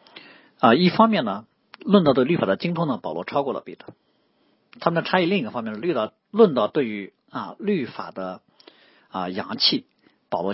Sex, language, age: male, Chinese, 50-69